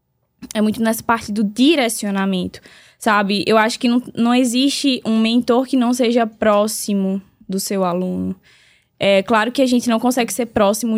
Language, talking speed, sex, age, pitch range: Portuguese, 170 wpm, female, 10-29, 205-240 Hz